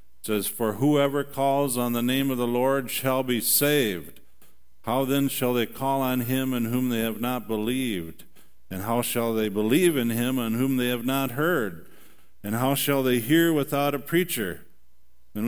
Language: English